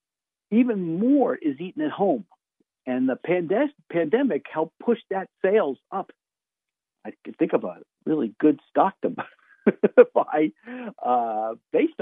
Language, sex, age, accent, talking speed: English, male, 50-69, American, 130 wpm